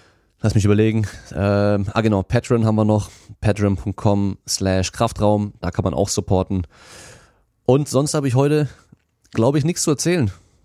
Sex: male